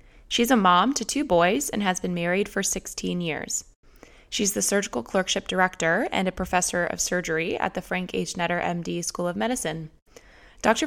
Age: 20-39